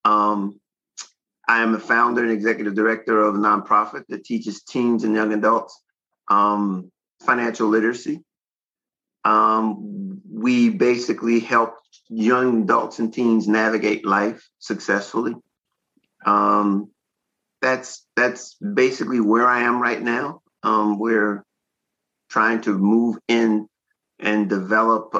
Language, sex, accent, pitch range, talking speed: English, male, American, 105-120 Hz, 115 wpm